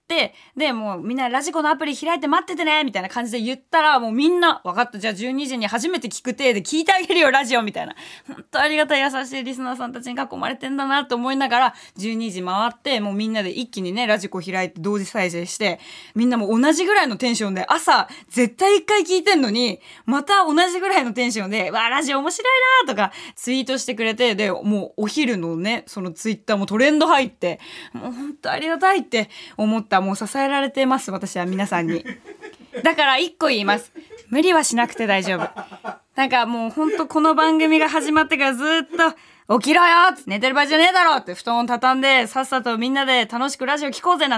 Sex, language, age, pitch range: female, Japanese, 20-39, 220-320 Hz